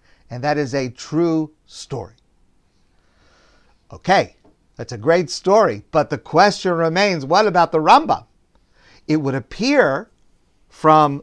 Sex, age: male, 50-69